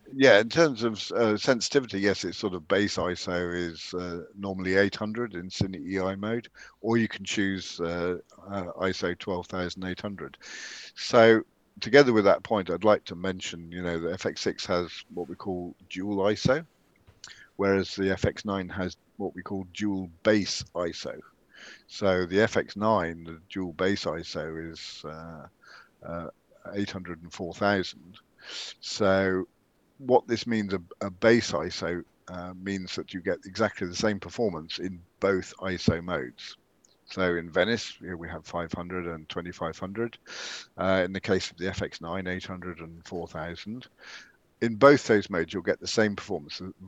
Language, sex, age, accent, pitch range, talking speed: English, male, 50-69, British, 90-100 Hz, 165 wpm